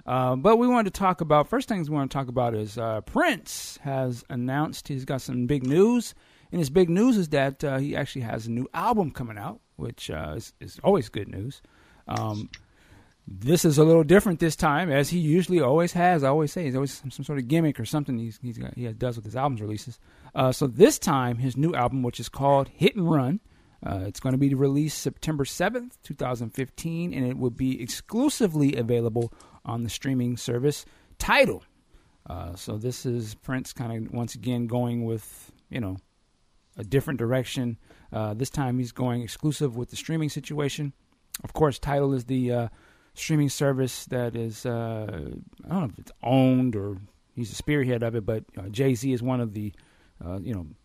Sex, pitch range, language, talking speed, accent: male, 115-145 Hz, English, 200 wpm, American